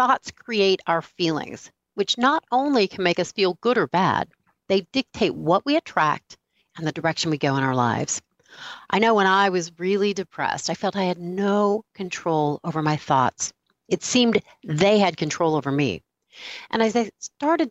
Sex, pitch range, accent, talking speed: female, 165-230 Hz, American, 185 wpm